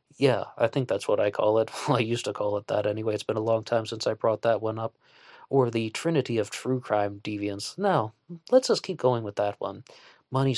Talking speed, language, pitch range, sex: 240 wpm, English, 110-130 Hz, male